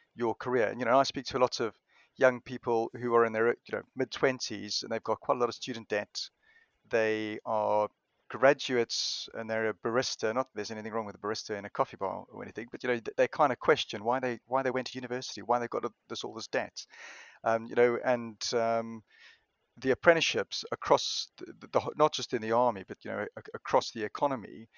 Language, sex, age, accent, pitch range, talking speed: English, male, 30-49, British, 115-135 Hz, 235 wpm